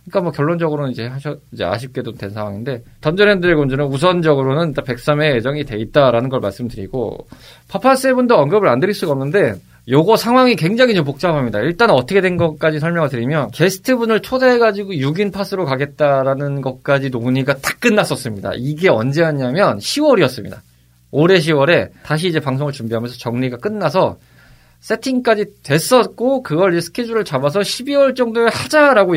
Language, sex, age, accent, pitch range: Korean, male, 20-39, native, 130-195 Hz